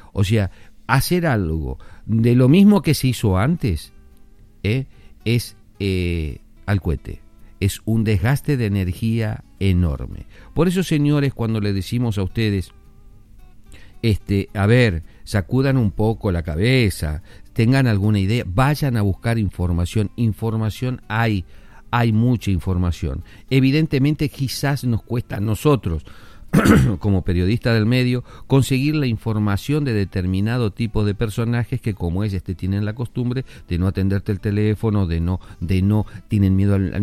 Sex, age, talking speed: male, 50-69, 145 wpm